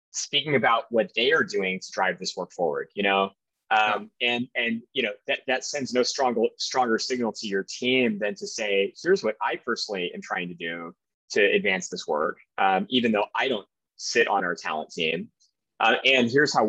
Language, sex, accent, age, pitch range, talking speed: English, male, American, 30-49, 105-130 Hz, 205 wpm